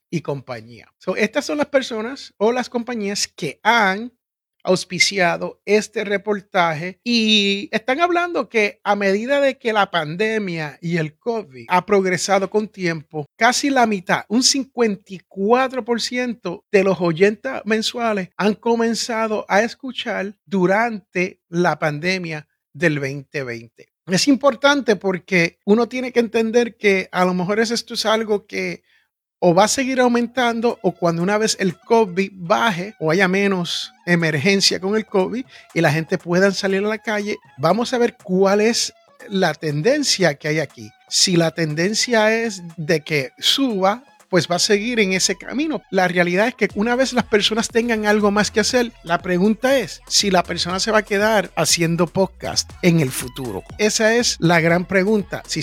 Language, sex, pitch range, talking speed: Spanish, male, 175-230 Hz, 160 wpm